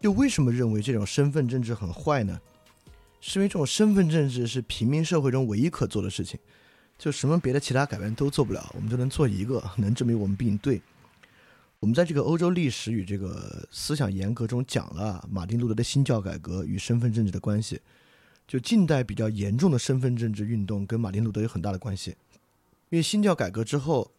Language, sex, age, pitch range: Chinese, male, 20-39, 105-145 Hz